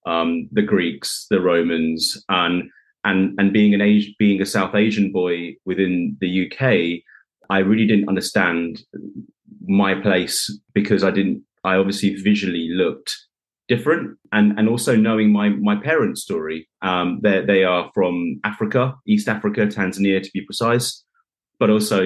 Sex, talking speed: male, 150 wpm